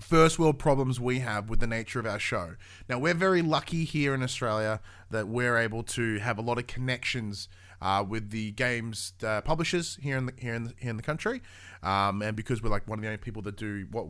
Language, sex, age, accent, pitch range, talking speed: English, male, 20-39, Australian, 105-140 Hz, 240 wpm